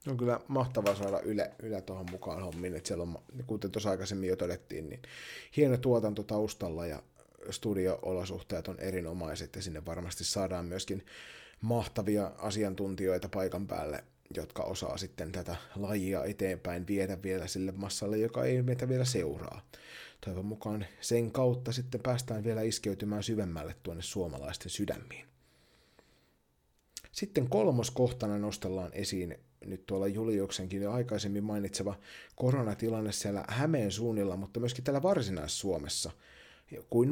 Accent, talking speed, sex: native, 130 wpm, male